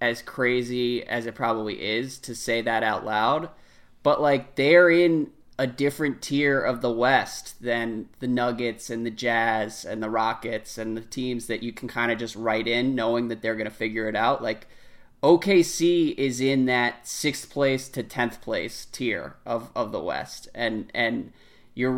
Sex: male